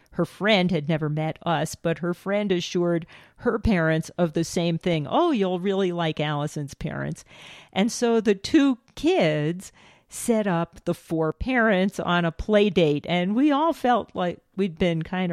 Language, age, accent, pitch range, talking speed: English, 50-69, American, 160-215 Hz, 170 wpm